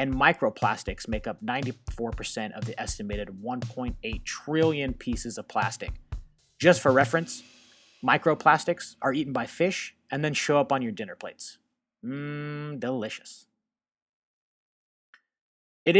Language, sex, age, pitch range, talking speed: English, male, 30-49, 125-155 Hz, 120 wpm